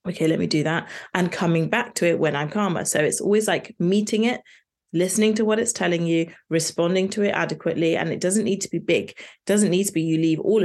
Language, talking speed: English, 250 wpm